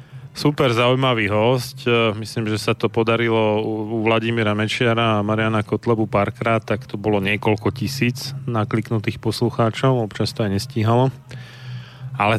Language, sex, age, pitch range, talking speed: Slovak, male, 30-49, 110-130 Hz, 130 wpm